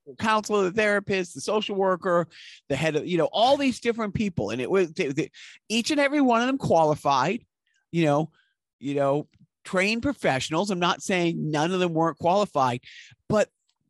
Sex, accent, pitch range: male, American, 140-195 Hz